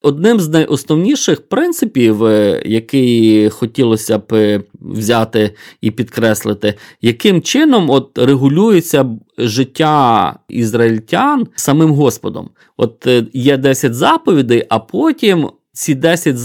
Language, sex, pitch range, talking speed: Ukrainian, male, 120-165 Hz, 95 wpm